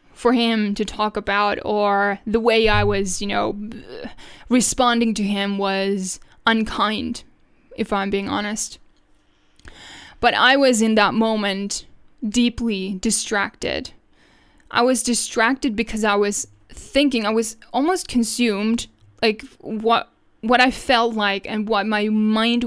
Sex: female